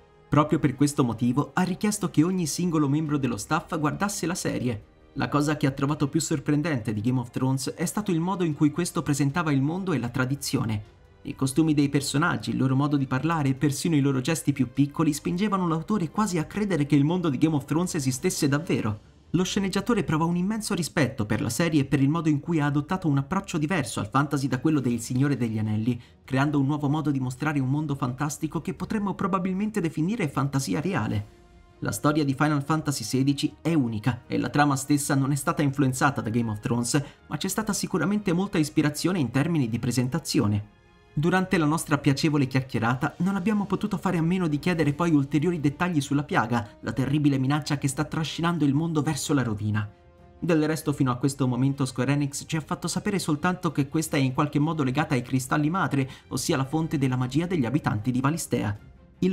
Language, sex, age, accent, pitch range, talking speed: Italian, male, 30-49, native, 130-165 Hz, 205 wpm